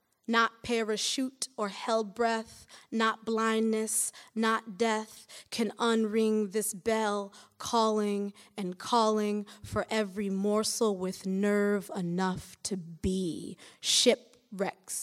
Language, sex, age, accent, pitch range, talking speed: English, female, 20-39, American, 190-240 Hz, 100 wpm